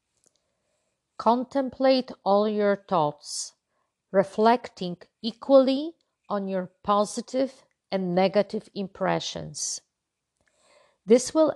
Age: 50-69